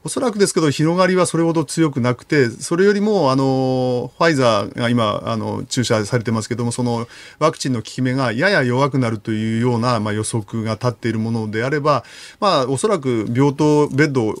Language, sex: Japanese, male